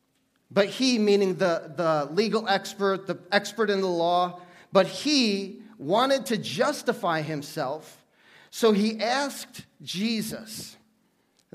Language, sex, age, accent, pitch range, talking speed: English, male, 40-59, American, 210-270 Hz, 120 wpm